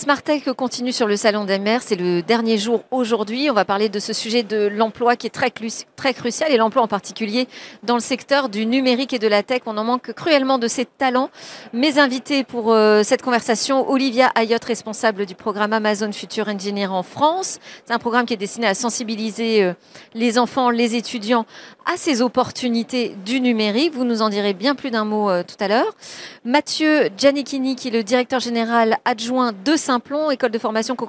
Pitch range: 220-260 Hz